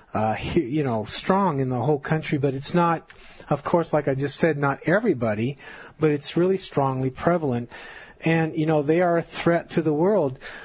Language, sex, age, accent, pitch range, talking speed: English, male, 40-59, American, 130-160 Hz, 190 wpm